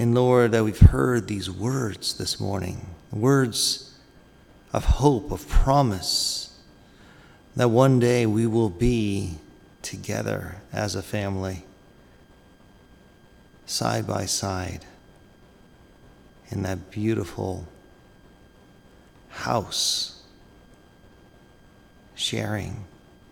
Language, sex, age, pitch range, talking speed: English, male, 50-69, 100-115 Hz, 75 wpm